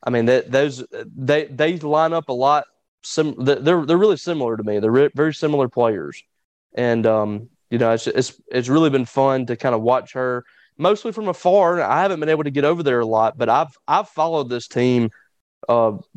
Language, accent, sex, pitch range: English, American, male, 115-140 Hz